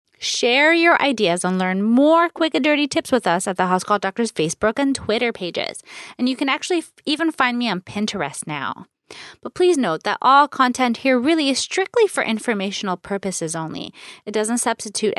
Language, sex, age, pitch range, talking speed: English, female, 30-49, 185-275 Hz, 190 wpm